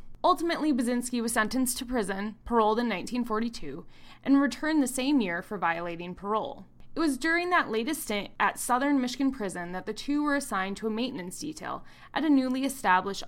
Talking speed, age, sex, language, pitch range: 180 wpm, 20-39, female, English, 195-265 Hz